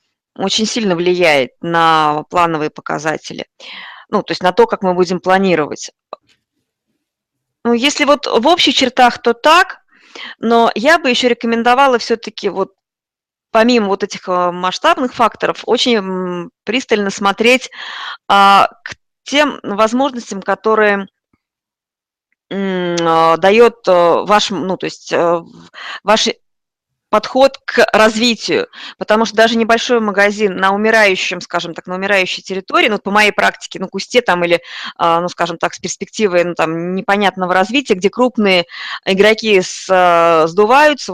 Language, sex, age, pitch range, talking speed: Russian, female, 20-39, 180-220 Hz, 120 wpm